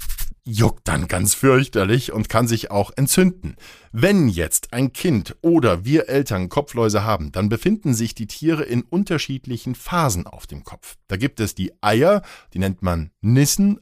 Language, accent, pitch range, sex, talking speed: German, German, 95-125 Hz, male, 165 wpm